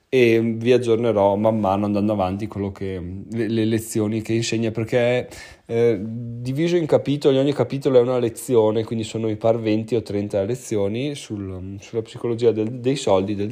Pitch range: 105-125 Hz